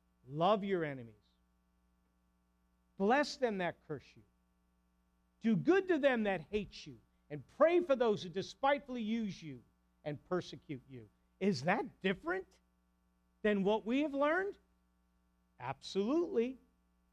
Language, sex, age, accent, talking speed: English, male, 50-69, American, 125 wpm